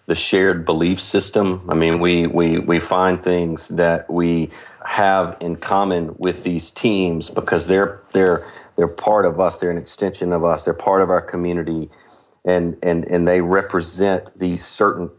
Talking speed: 170 wpm